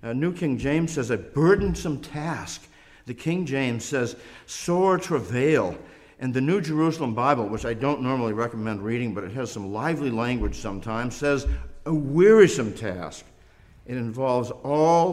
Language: English